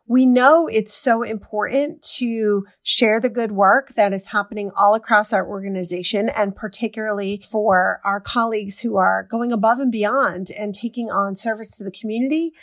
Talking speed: 165 wpm